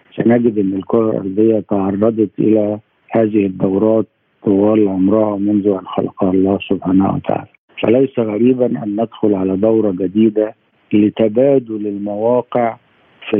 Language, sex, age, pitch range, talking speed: Arabic, male, 50-69, 100-115 Hz, 115 wpm